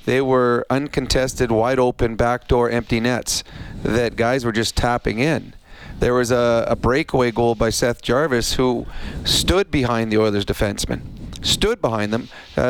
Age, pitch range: 40-59, 120-145 Hz